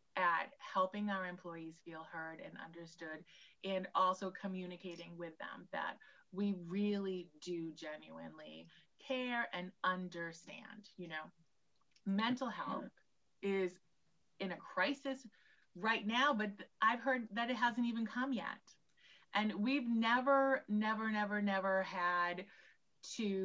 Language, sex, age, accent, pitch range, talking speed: English, female, 30-49, American, 180-230 Hz, 125 wpm